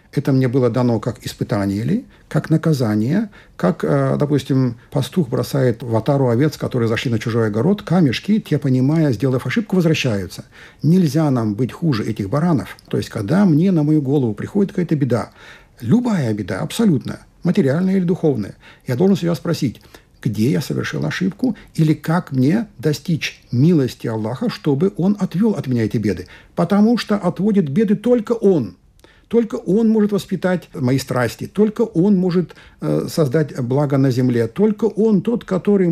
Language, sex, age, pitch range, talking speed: Russian, male, 60-79, 125-185 Hz, 155 wpm